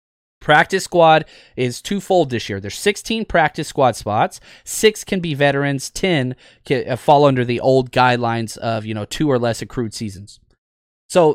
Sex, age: male, 30-49